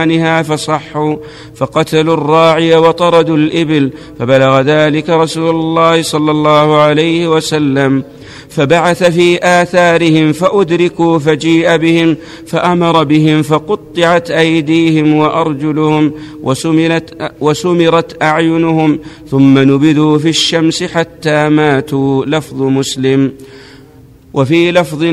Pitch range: 150-165 Hz